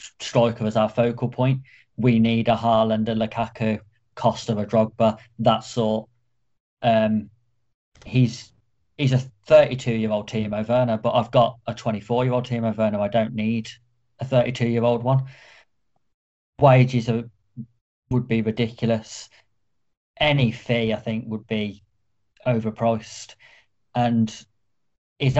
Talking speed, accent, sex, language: 120 wpm, British, male, English